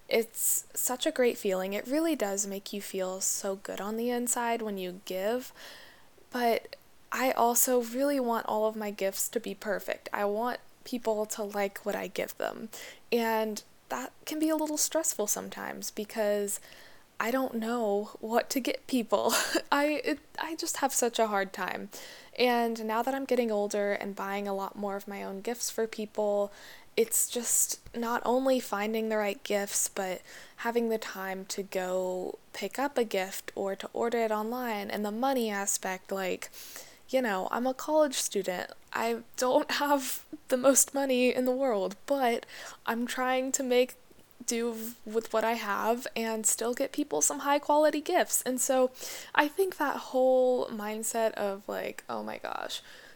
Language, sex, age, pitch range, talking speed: English, female, 10-29, 205-260 Hz, 175 wpm